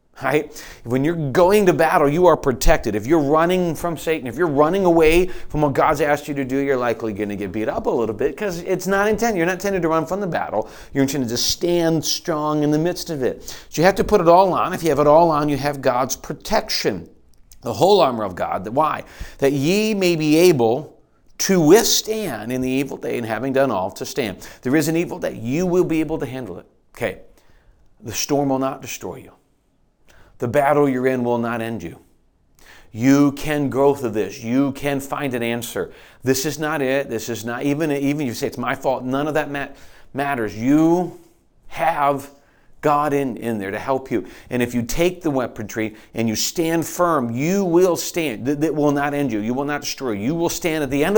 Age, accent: 40-59, American